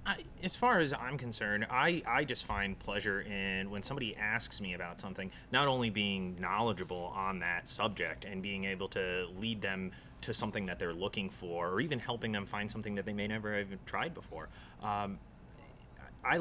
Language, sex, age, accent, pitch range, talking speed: English, male, 30-49, American, 95-115 Hz, 185 wpm